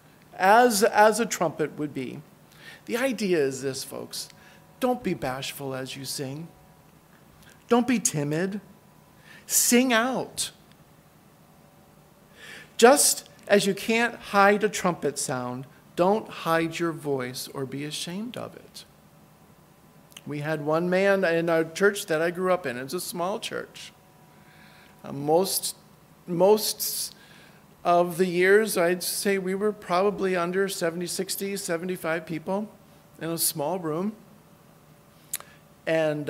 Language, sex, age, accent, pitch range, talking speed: English, male, 50-69, American, 150-195 Hz, 125 wpm